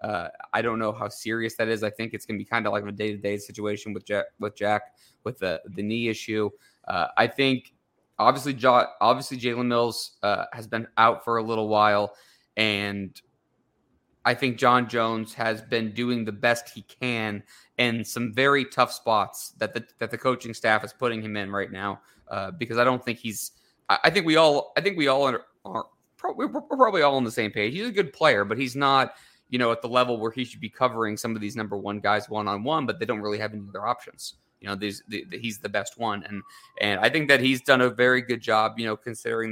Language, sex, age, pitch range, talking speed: English, male, 20-39, 110-130 Hz, 235 wpm